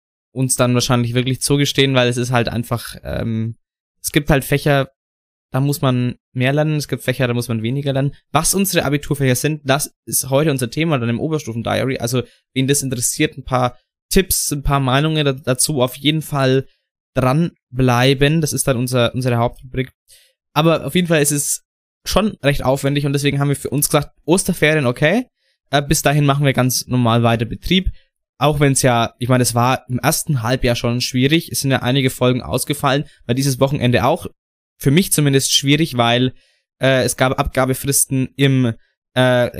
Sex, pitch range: male, 125-145 Hz